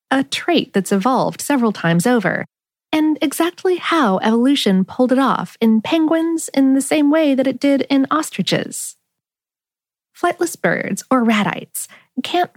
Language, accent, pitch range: English, American, 205-290 Hz